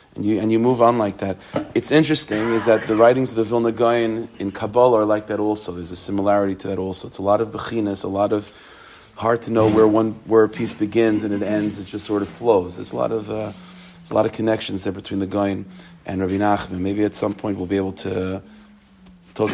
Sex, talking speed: male, 240 wpm